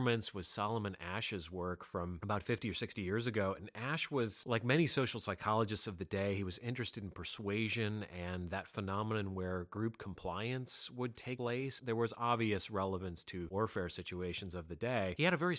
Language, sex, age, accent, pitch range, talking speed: English, male, 30-49, American, 90-115 Hz, 190 wpm